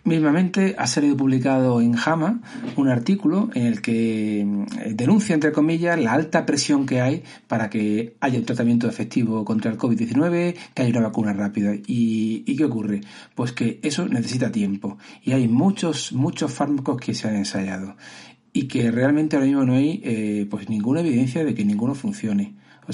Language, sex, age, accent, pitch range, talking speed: Spanish, male, 60-79, Spanish, 110-175 Hz, 175 wpm